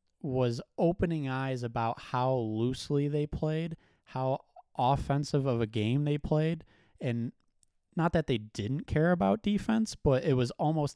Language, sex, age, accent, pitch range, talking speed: English, male, 20-39, American, 105-135 Hz, 150 wpm